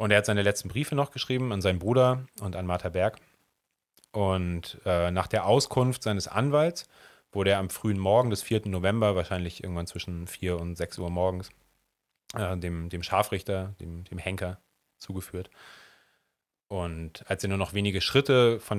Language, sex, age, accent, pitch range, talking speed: German, male, 30-49, German, 90-110 Hz, 170 wpm